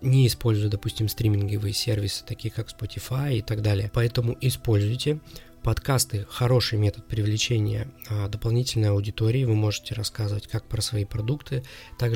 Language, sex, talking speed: Russian, male, 135 wpm